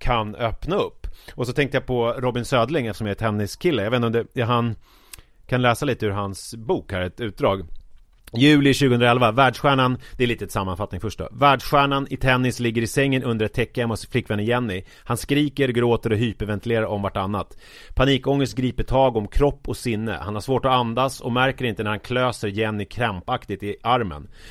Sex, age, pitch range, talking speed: male, 30-49, 105-130 Hz, 195 wpm